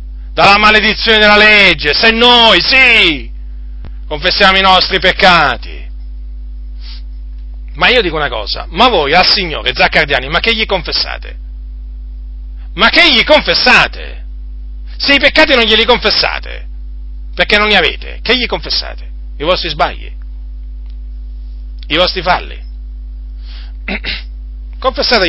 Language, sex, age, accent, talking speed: Italian, male, 40-59, native, 115 wpm